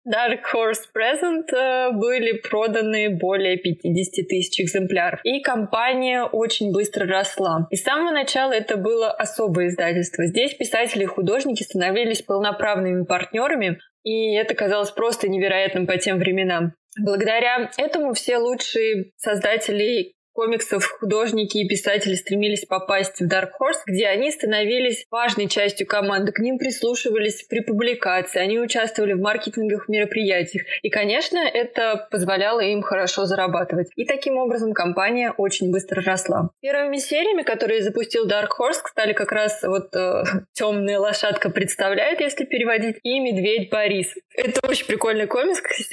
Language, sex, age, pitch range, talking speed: Russian, female, 20-39, 195-240 Hz, 135 wpm